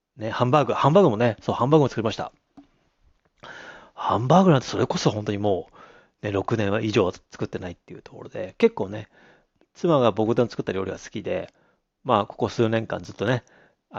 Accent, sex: native, male